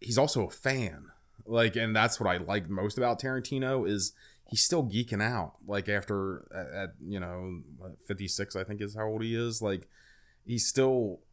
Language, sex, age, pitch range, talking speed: English, male, 20-39, 90-110 Hz, 185 wpm